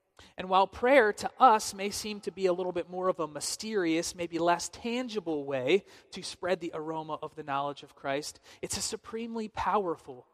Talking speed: 190 wpm